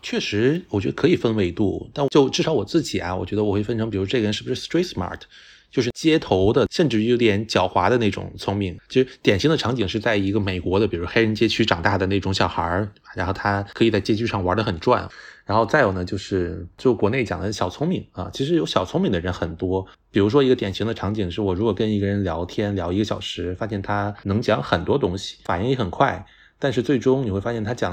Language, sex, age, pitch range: Chinese, male, 20-39, 95-115 Hz